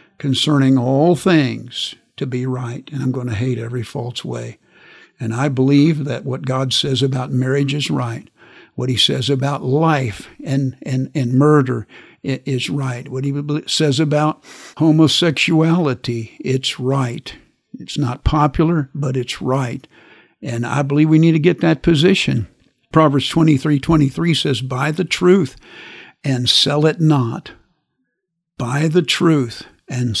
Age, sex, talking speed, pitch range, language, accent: 60-79, male, 150 wpm, 130-155 Hz, English, American